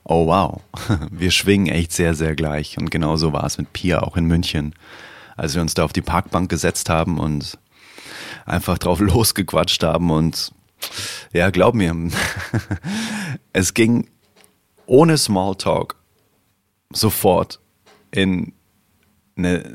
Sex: male